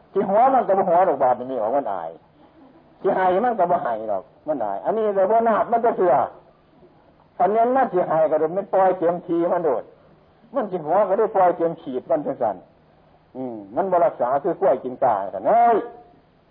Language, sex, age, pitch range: Thai, male, 60-79, 140-220 Hz